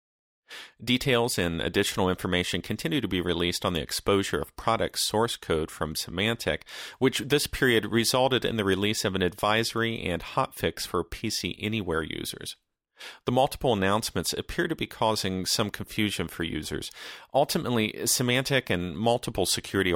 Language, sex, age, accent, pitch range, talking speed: English, male, 40-59, American, 90-120 Hz, 145 wpm